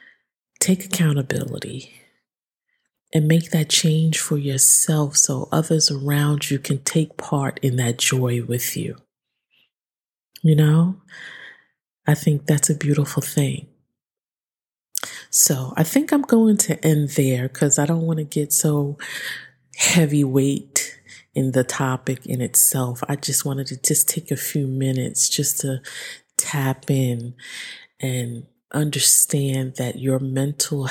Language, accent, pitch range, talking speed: English, American, 130-155 Hz, 130 wpm